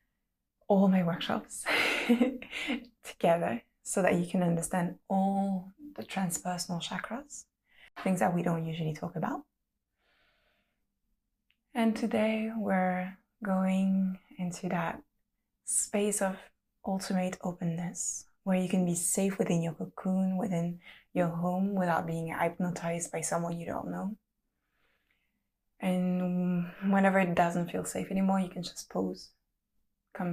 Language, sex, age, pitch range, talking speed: English, female, 20-39, 175-200 Hz, 120 wpm